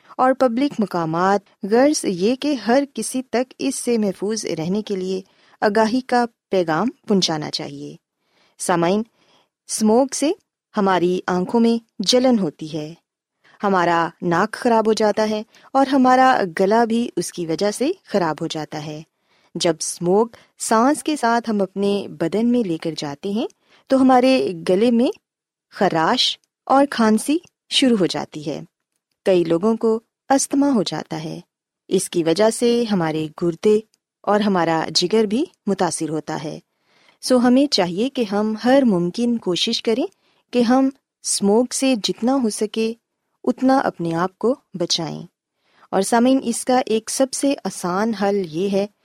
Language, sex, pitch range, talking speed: Urdu, female, 180-250 Hz, 145 wpm